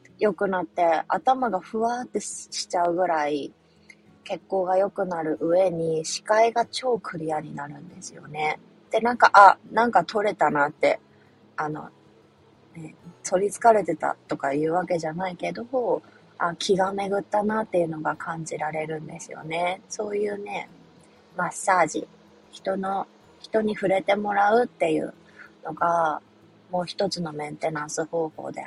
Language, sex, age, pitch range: Japanese, female, 20-39, 165-215 Hz